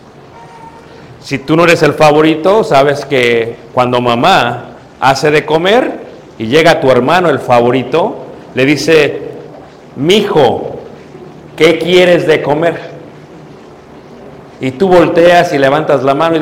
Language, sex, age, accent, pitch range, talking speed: Spanish, male, 50-69, Mexican, 135-170 Hz, 125 wpm